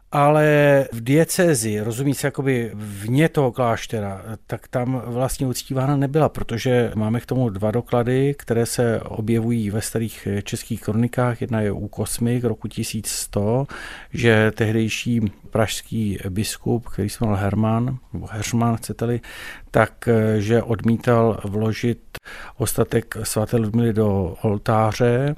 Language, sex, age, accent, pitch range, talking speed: Czech, male, 50-69, native, 110-125 Hz, 125 wpm